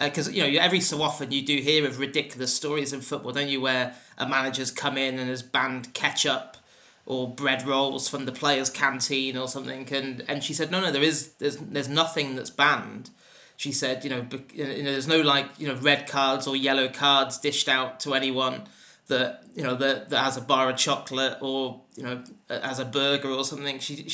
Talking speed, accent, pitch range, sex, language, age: 220 wpm, British, 135-150 Hz, male, English, 30-49